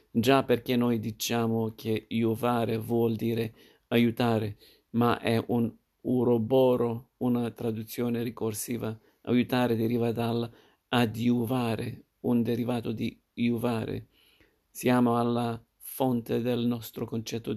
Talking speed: 100 wpm